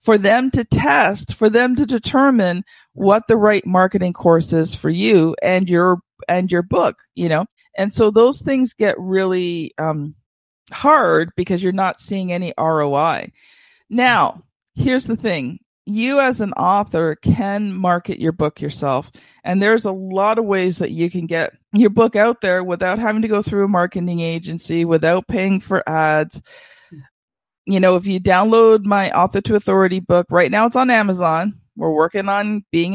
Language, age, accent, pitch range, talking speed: English, 50-69, American, 175-220 Hz, 175 wpm